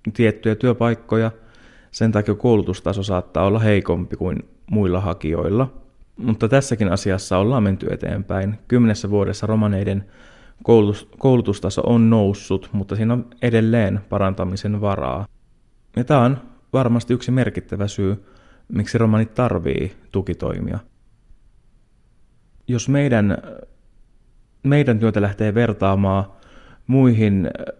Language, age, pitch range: Finnish, 30-49, 95-115 Hz